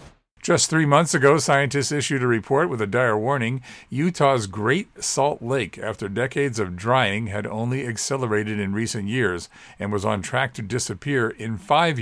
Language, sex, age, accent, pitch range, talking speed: English, male, 50-69, American, 105-135 Hz, 170 wpm